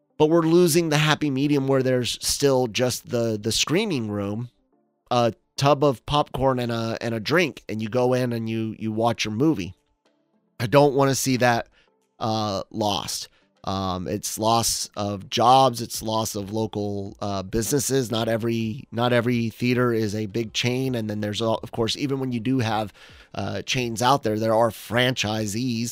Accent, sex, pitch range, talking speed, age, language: American, male, 110-140 Hz, 180 wpm, 30-49, English